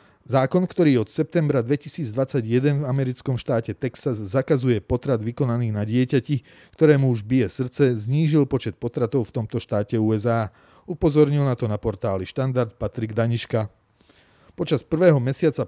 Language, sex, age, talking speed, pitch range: Slovak, male, 40-59, 140 wpm, 115-140 Hz